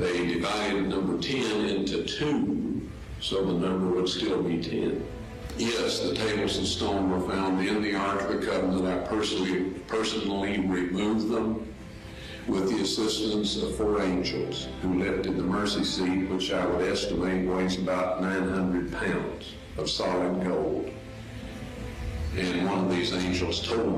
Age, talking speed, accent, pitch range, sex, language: 50-69, 150 wpm, American, 85-95 Hz, male, English